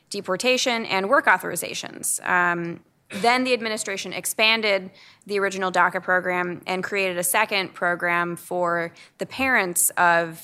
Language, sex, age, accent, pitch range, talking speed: English, female, 20-39, American, 175-195 Hz, 125 wpm